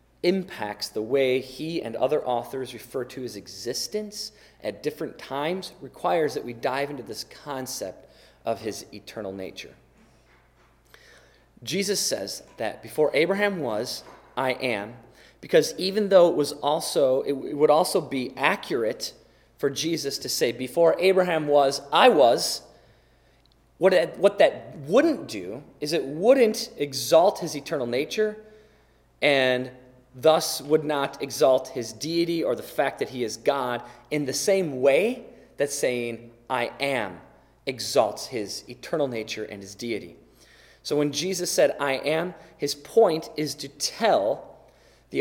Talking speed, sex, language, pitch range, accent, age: 140 wpm, male, English, 130-190 Hz, American, 30-49